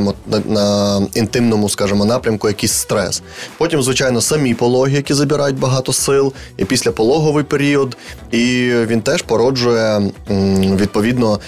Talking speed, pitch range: 115 wpm, 105-135 Hz